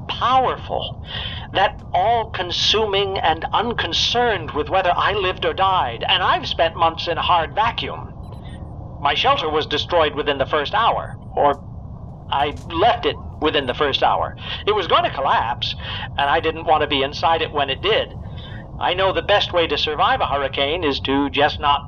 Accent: American